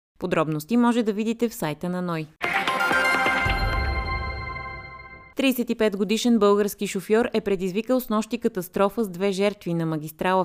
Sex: female